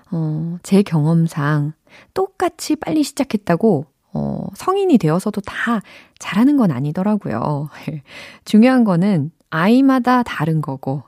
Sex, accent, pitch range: female, native, 160-260 Hz